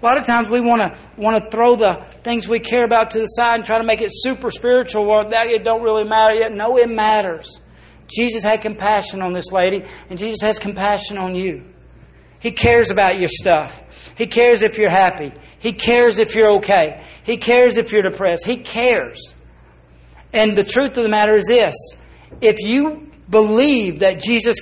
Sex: male